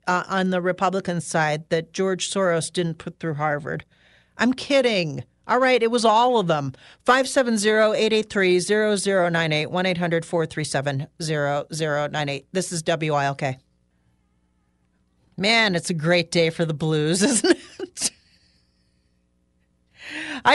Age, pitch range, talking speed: 40-59, 155-205 Hz, 160 wpm